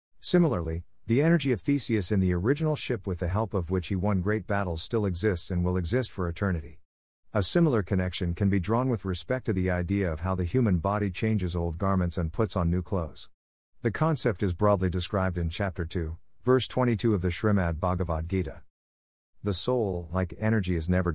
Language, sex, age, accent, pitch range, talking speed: English, male, 50-69, American, 85-110 Hz, 195 wpm